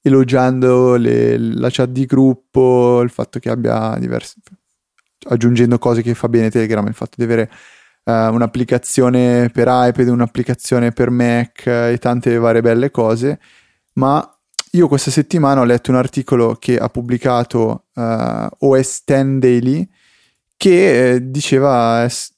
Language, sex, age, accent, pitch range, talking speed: Italian, male, 20-39, native, 115-135 Hz, 135 wpm